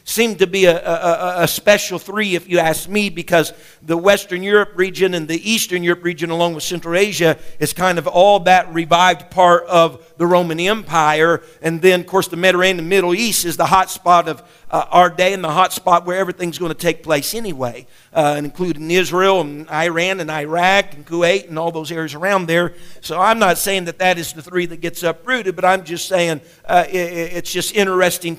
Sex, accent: male, American